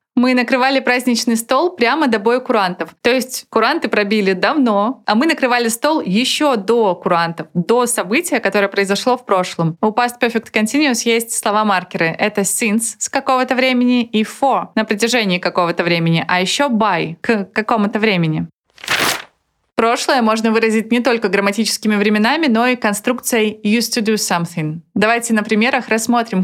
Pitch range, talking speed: 200-250 Hz, 150 wpm